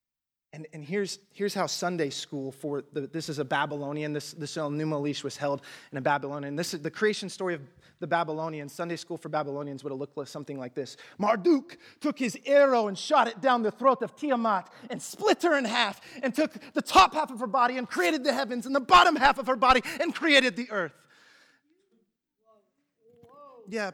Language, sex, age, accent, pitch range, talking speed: English, male, 30-49, American, 155-235 Hz, 210 wpm